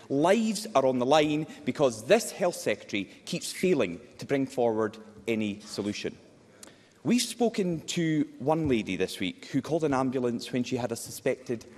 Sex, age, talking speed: male, 30-49, 165 wpm